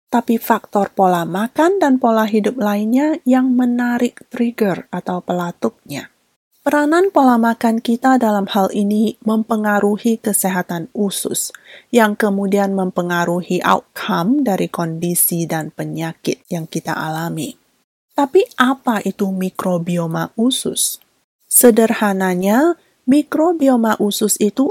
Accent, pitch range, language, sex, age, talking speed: native, 195-245 Hz, Indonesian, female, 30-49, 105 wpm